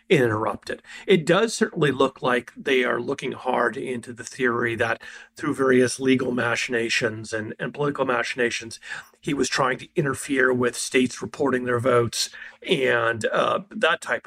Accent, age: American, 40-59